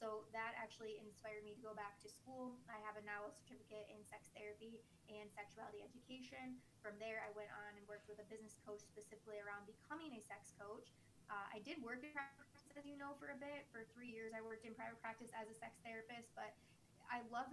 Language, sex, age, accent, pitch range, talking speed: English, female, 20-39, American, 210-230 Hz, 225 wpm